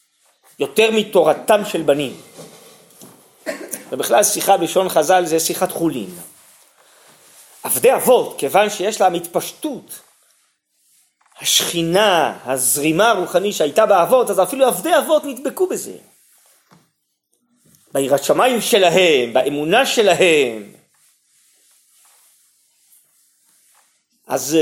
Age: 40-59